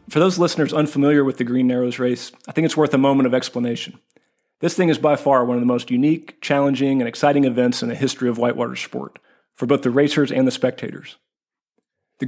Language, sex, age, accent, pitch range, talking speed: English, male, 40-59, American, 125-150 Hz, 220 wpm